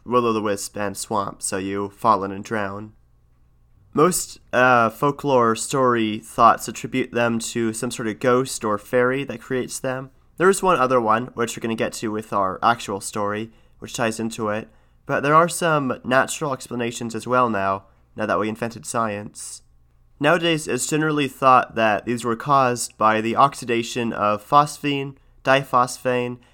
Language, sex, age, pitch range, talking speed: English, male, 30-49, 110-125 Hz, 165 wpm